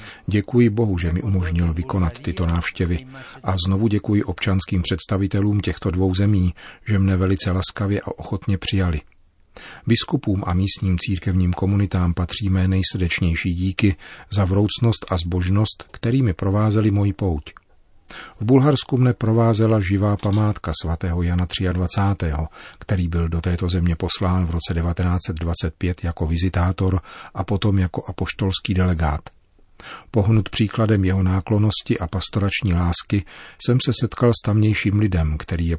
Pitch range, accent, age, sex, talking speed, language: 90-105 Hz, native, 40-59, male, 135 wpm, Czech